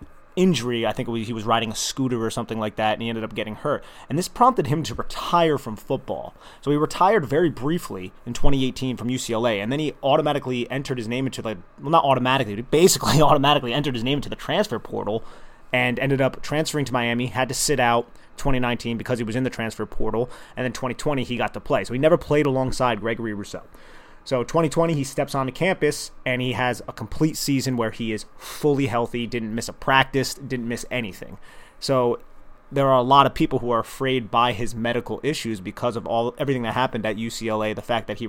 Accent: American